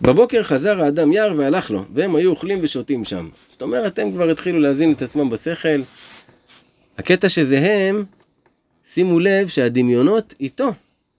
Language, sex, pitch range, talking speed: Hebrew, male, 120-185 Hz, 145 wpm